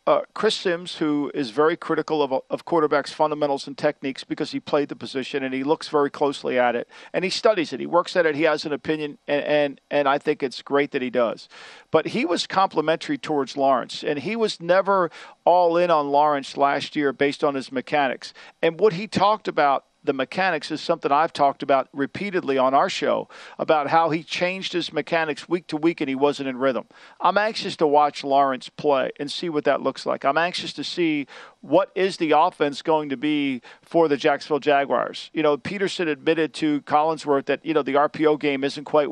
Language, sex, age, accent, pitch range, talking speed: English, male, 50-69, American, 140-170 Hz, 210 wpm